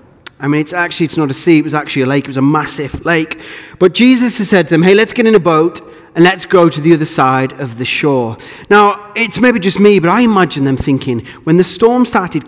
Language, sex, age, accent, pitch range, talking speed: English, male, 30-49, British, 140-220 Hz, 260 wpm